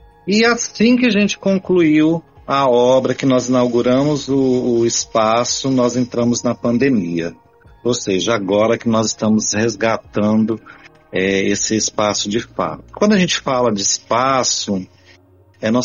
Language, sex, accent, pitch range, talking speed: Portuguese, male, Brazilian, 110-140 Hz, 135 wpm